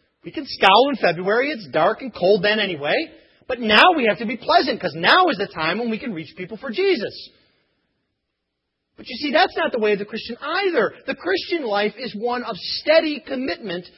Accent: American